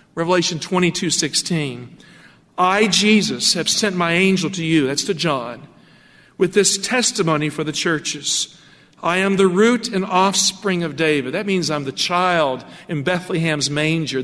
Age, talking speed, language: 50-69, 150 wpm, English